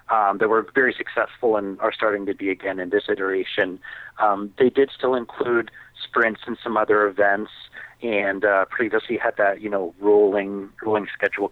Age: 40-59